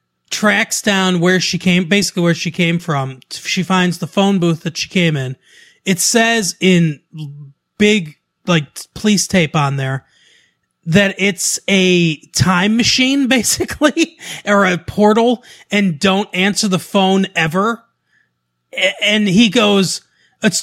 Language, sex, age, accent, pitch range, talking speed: English, male, 30-49, American, 155-205 Hz, 135 wpm